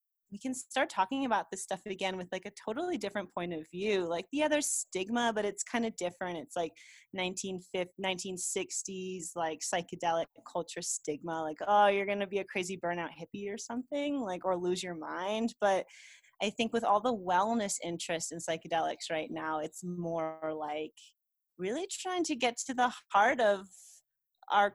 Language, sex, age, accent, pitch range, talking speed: English, female, 20-39, American, 170-215 Hz, 180 wpm